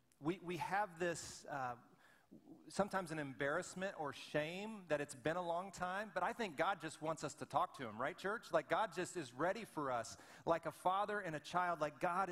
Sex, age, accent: male, 40-59, American